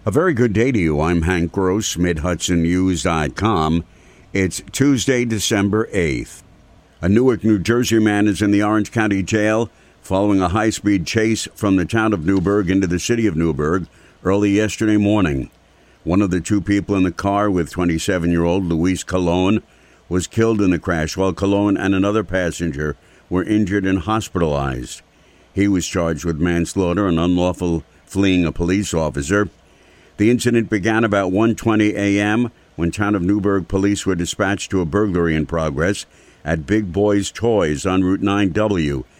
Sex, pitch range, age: male, 85-100 Hz, 60-79